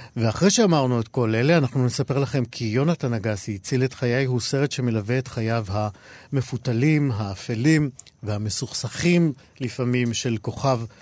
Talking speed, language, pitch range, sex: 135 wpm, Hebrew, 115-140 Hz, male